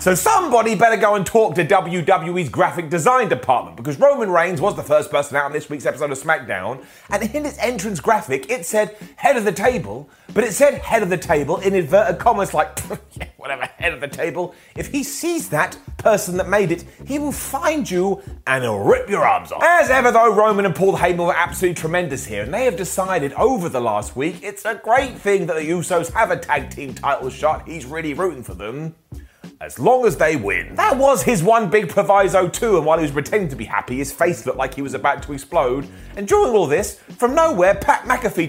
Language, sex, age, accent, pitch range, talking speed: English, male, 30-49, British, 165-230 Hz, 225 wpm